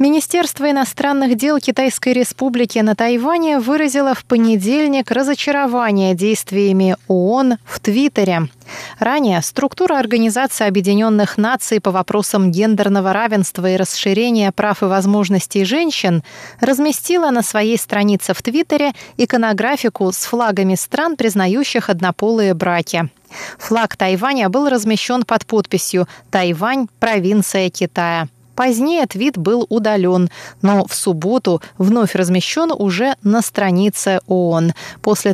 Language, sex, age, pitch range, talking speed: Russian, female, 20-39, 190-255 Hz, 110 wpm